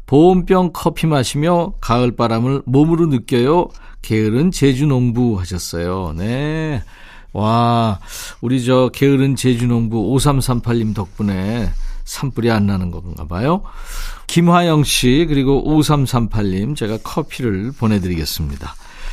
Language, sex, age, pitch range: Korean, male, 40-59, 115-155 Hz